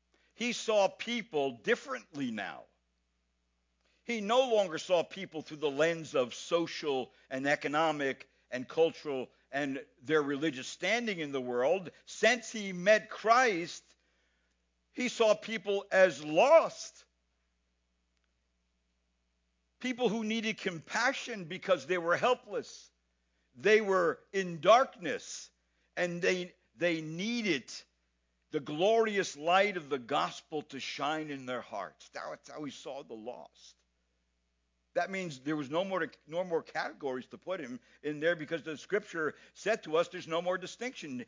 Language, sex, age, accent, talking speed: English, male, 60-79, American, 130 wpm